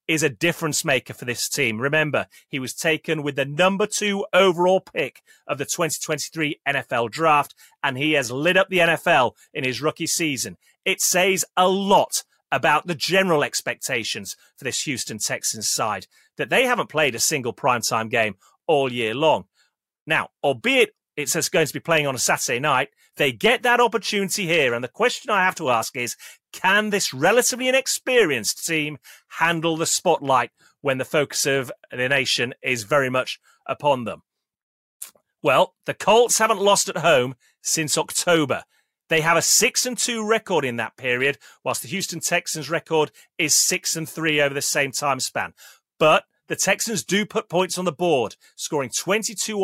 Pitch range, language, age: 140-190 Hz, English, 30-49